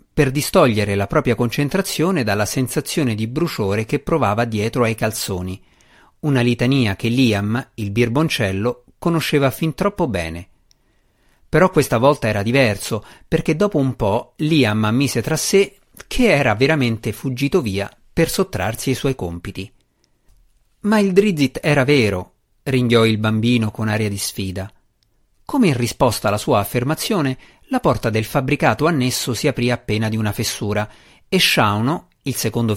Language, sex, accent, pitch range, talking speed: Italian, male, native, 105-145 Hz, 145 wpm